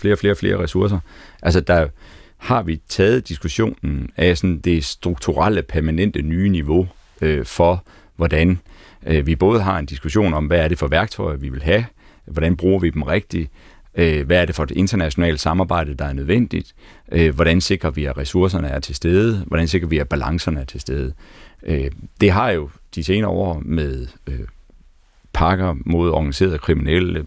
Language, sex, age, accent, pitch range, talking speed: Danish, male, 40-59, native, 80-95 Hz, 180 wpm